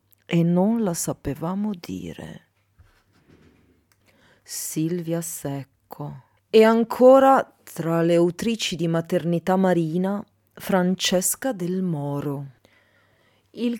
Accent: native